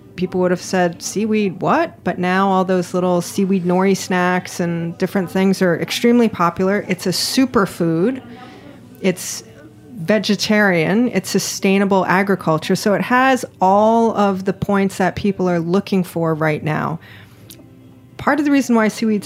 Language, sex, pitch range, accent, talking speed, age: English, female, 170-210 Hz, American, 150 wpm, 30-49